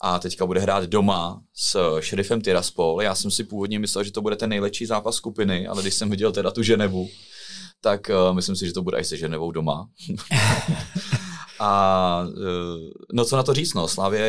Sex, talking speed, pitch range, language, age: male, 195 wpm, 90-105 Hz, Czech, 30-49